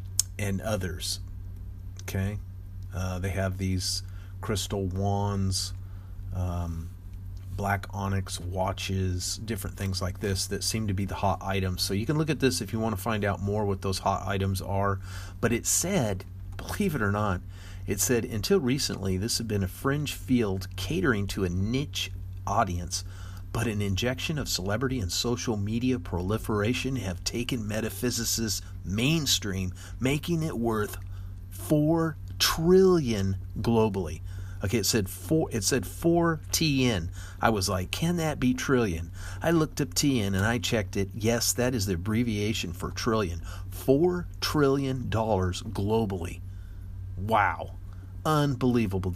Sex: male